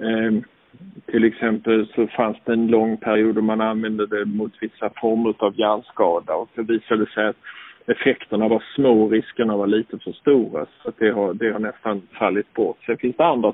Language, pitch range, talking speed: Swedish, 110-125 Hz, 205 wpm